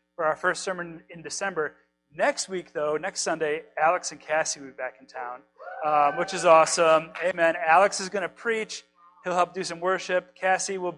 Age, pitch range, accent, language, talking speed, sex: 30-49, 135-185 Hz, American, English, 195 wpm, male